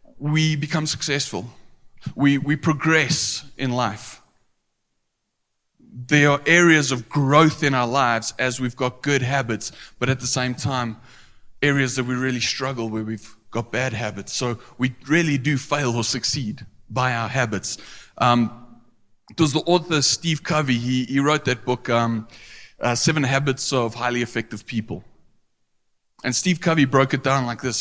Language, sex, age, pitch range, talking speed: English, male, 20-39, 115-145 Hz, 160 wpm